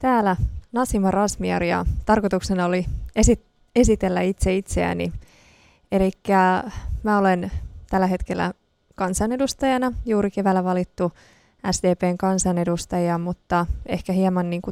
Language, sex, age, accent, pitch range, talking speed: Finnish, female, 20-39, native, 170-195 Hz, 100 wpm